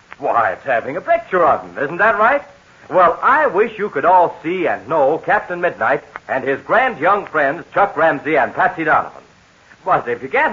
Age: 60-79